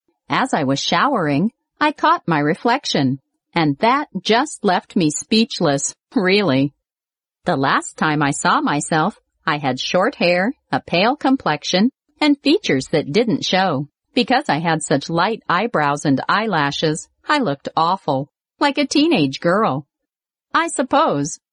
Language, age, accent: Chinese, 50-69, American